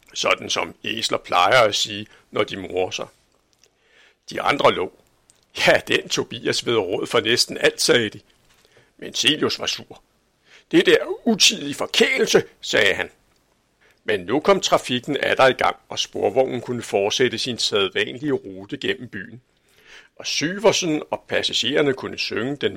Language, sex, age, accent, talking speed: Danish, male, 60-79, native, 150 wpm